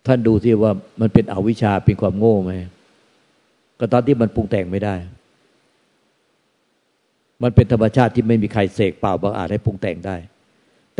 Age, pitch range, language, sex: 60-79, 95-120 Hz, Thai, male